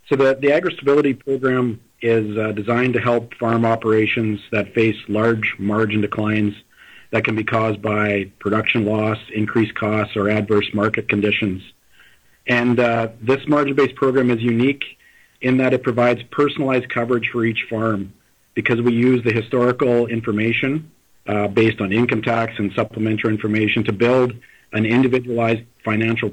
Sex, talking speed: male, 150 wpm